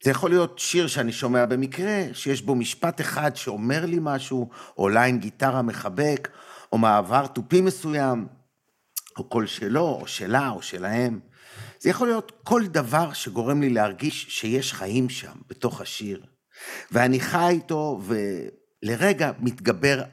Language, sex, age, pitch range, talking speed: Hebrew, male, 50-69, 110-150 Hz, 145 wpm